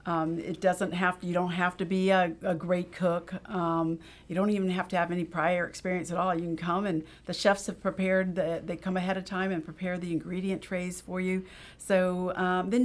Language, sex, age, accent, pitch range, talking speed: English, female, 50-69, American, 175-205 Hz, 235 wpm